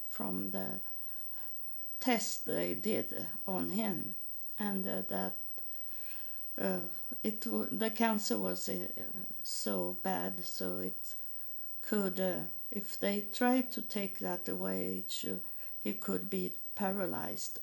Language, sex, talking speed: English, female, 110 wpm